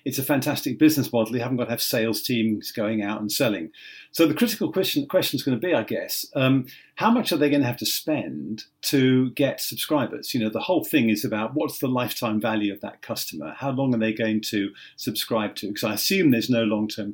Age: 50-69